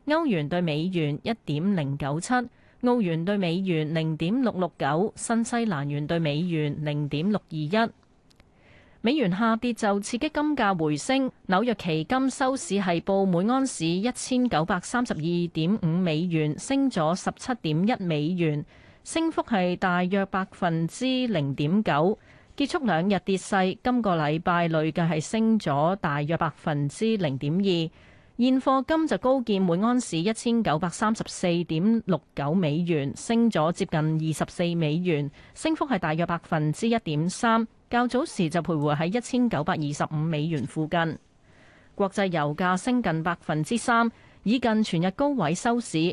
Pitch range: 160-230 Hz